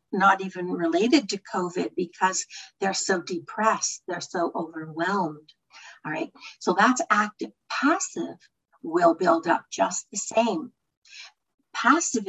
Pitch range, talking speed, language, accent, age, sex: 180-240 Hz, 120 wpm, English, American, 60-79, female